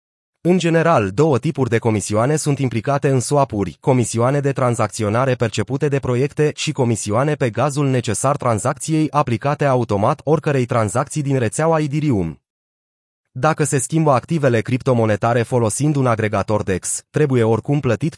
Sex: male